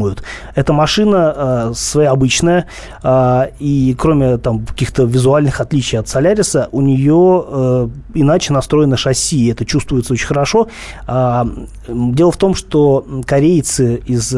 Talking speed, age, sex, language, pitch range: 135 wpm, 30-49, male, Russian, 125-160 Hz